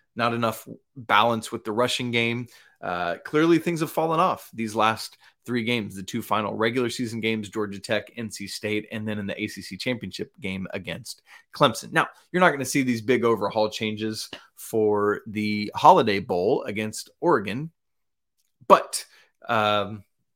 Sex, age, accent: male, 30-49, American